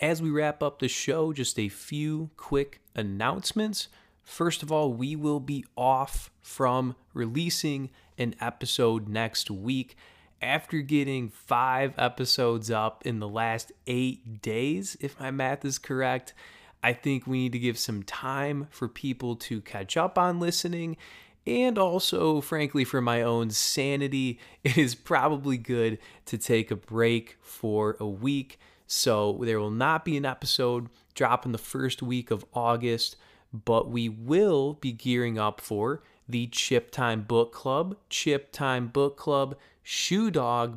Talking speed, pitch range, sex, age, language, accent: 155 wpm, 115-145 Hz, male, 20-39, English, American